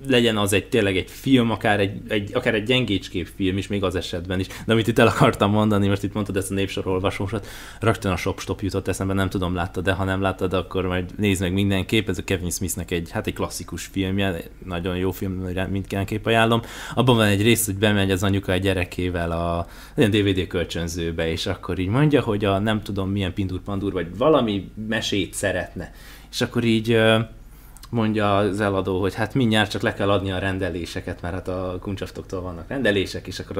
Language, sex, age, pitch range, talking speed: Hungarian, male, 20-39, 95-115 Hz, 200 wpm